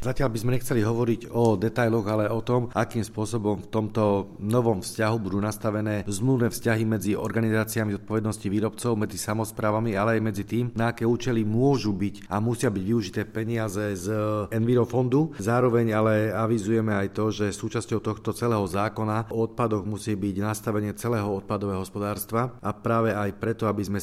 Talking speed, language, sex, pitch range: 165 wpm, Slovak, male, 105-115 Hz